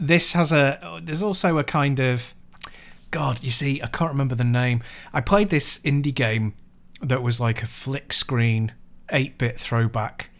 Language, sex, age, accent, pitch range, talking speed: English, male, 30-49, British, 115-135 Hz, 165 wpm